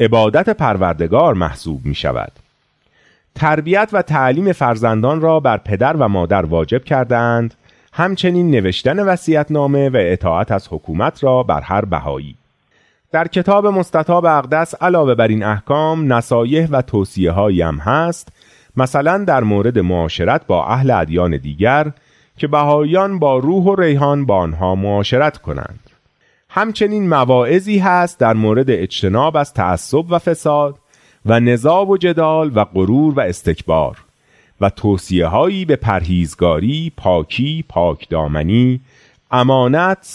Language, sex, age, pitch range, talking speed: Persian, male, 30-49, 100-155 Hz, 125 wpm